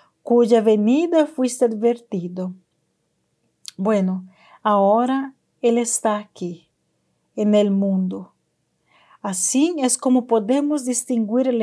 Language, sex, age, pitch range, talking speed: Spanish, female, 50-69, 210-255 Hz, 95 wpm